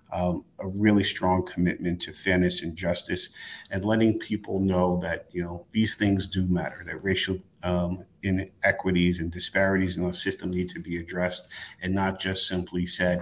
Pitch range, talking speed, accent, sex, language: 90-95 Hz, 170 wpm, American, male, English